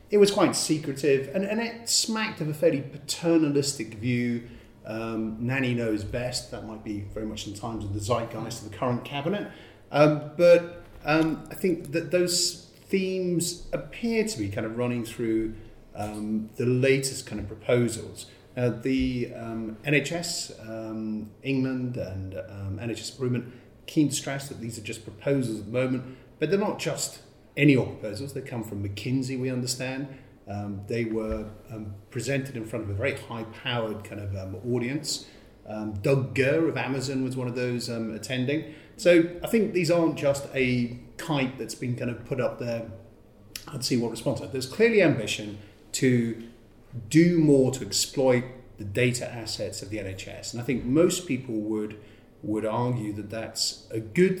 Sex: male